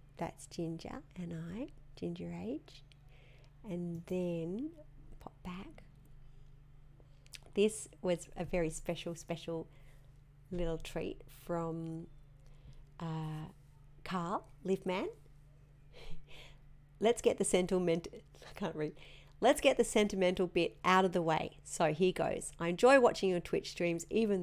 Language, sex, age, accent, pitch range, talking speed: English, female, 40-59, Australian, 140-185 Hz, 120 wpm